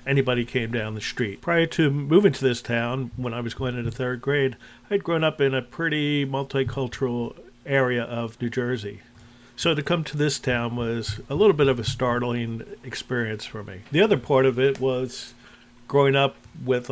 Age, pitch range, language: 50-69, 120-140 Hz, English